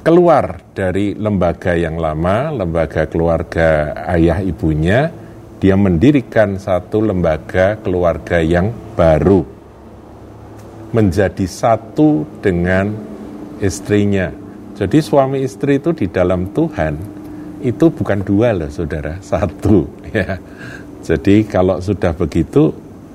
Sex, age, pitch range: male, 50-69, 90-115 Hz